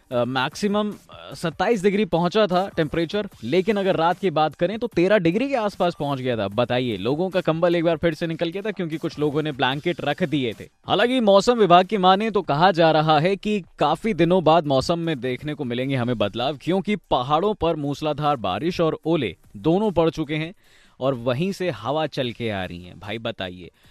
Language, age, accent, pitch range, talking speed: Hindi, 20-39, native, 130-175 Hz, 210 wpm